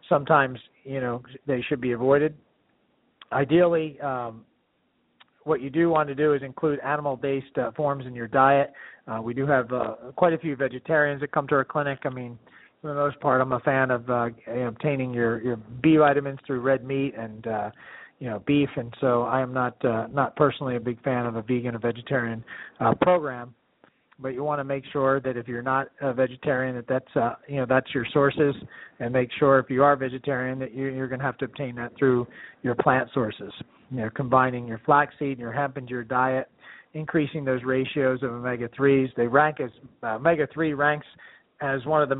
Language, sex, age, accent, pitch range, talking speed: English, male, 40-59, American, 125-145 Hz, 210 wpm